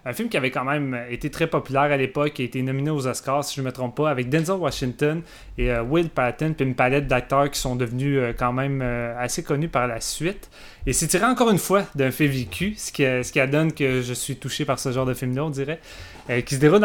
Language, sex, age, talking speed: French, male, 30-49, 265 wpm